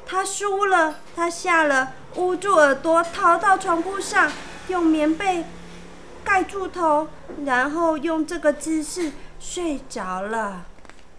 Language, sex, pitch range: Chinese, female, 225-325 Hz